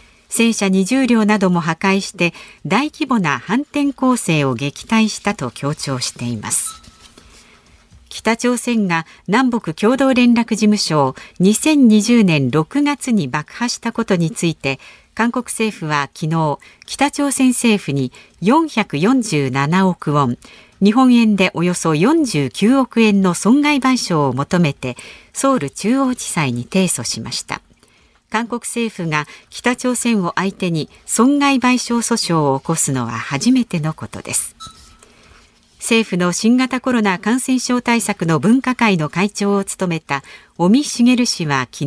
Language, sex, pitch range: Japanese, female, 155-240 Hz